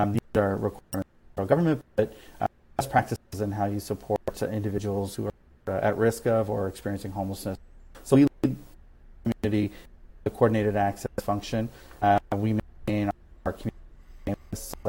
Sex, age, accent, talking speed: male, 30-49, American, 155 wpm